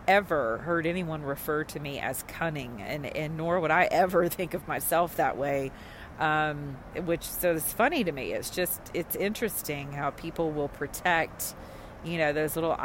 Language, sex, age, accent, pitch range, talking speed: English, female, 40-59, American, 145-170 Hz, 180 wpm